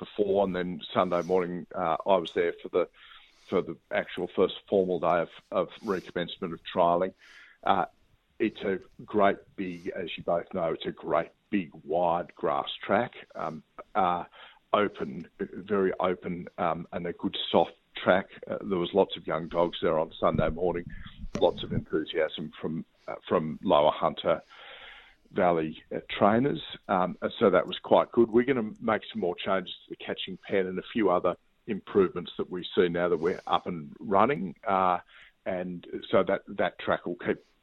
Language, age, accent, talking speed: English, 50-69, Australian, 175 wpm